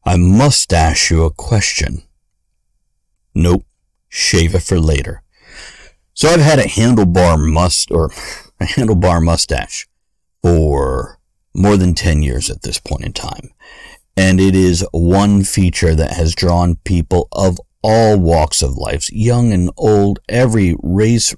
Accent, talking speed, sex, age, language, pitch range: American, 140 wpm, male, 50-69, English, 80-100 Hz